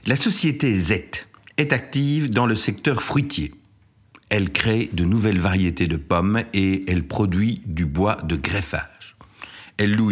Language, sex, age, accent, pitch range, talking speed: French, male, 60-79, French, 90-120 Hz, 150 wpm